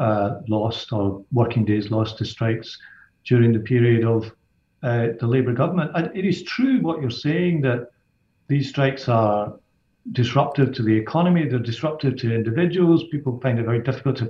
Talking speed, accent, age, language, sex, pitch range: 170 wpm, British, 50-69, English, male, 115-150 Hz